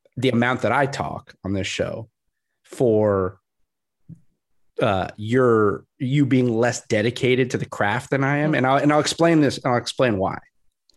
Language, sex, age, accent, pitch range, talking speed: English, male, 30-49, American, 110-150 Hz, 170 wpm